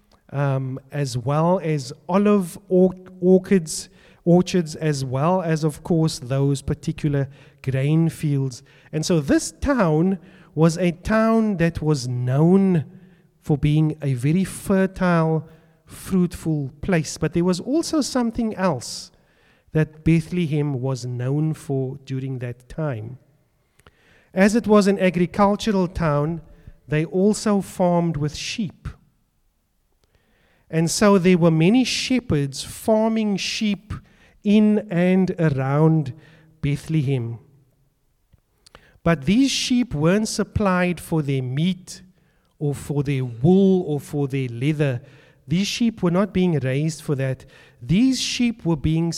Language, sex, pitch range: English, male, 140-185 Hz